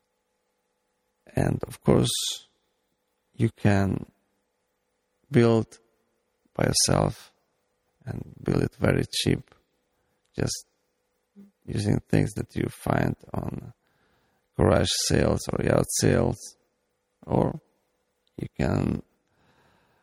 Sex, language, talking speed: male, English, 85 wpm